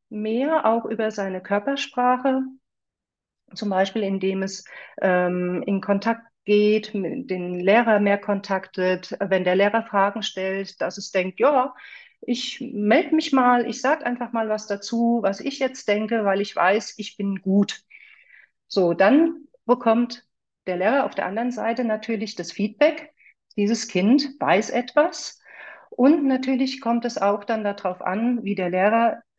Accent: German